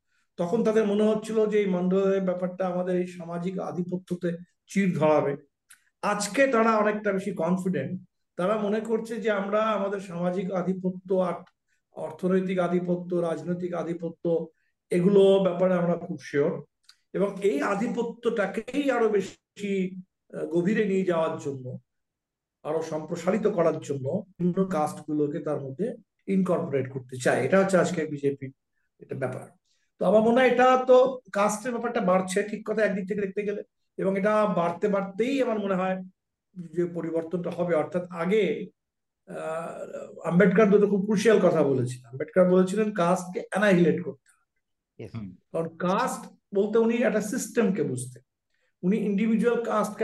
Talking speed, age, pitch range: 120 wpm, 50-69, 170-210 Hz